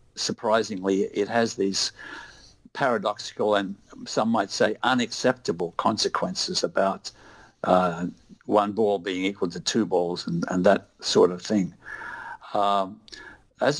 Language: English